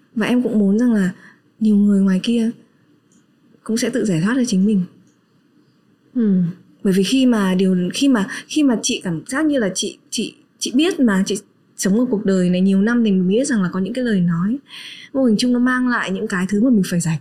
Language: Vietnamese